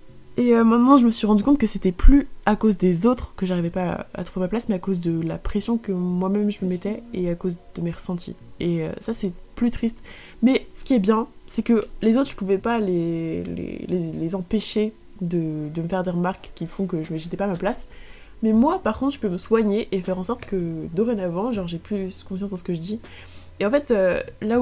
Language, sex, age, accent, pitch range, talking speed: French, female, 20-39, French, 180-220 Hz, 260 wpm